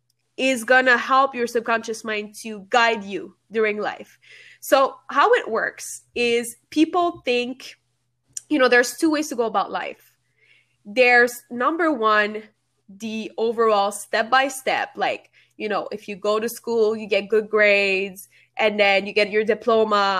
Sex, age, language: female, 20-39, English